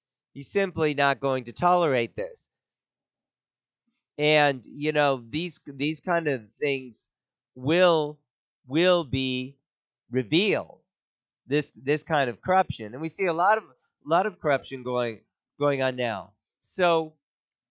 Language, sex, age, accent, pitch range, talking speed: English, male, 40-59, American, 130-160 Hz, 130 wpm